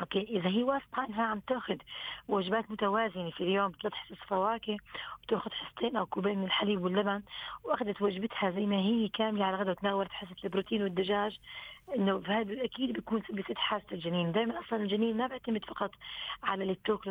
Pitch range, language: 200-235 Hz, Arabic